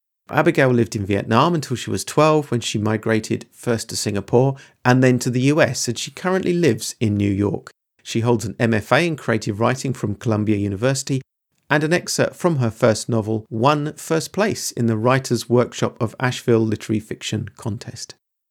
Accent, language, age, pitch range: British, English, 40-59, 110-140 Hz